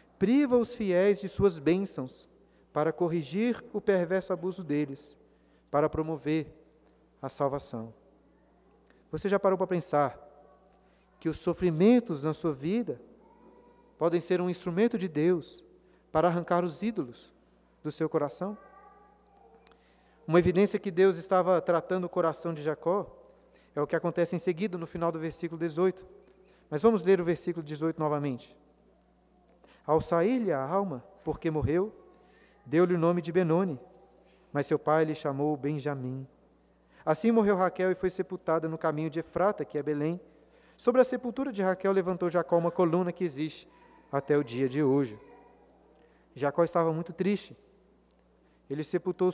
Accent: Brazilian